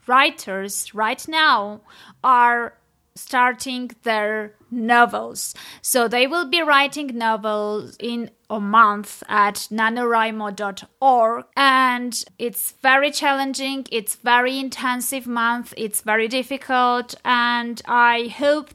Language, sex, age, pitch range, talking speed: English, female, 20-39, 220-270 Hz, 100 wpm